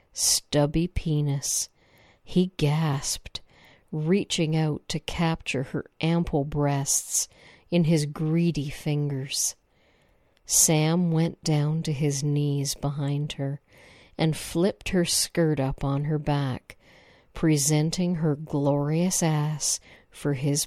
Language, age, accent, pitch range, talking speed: English, 50-69, American, 145-170 Hz, 105 wpm